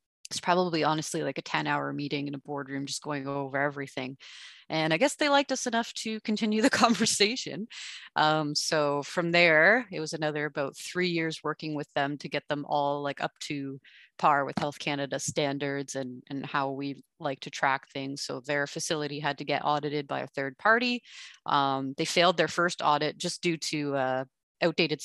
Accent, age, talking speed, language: American, 30-49, 195 wpm, English